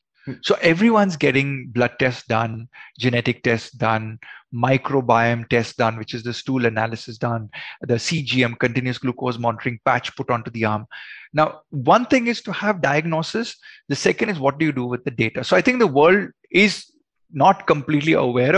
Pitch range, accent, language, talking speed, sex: 125-160 Hz, native, Hindi, 180 wpm, male